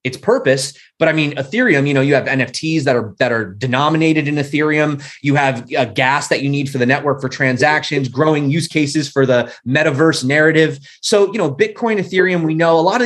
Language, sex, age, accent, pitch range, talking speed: English, male, 20-39, American, 135-175 Hz, 215 wpm